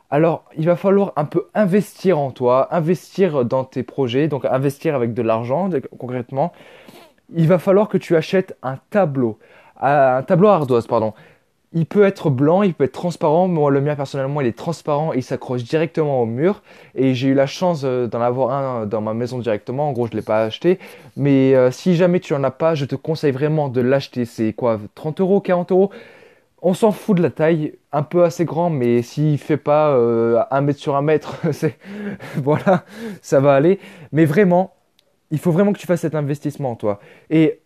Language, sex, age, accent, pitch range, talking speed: French, male, 20-39, French, 130-175 Hz, 205 wpm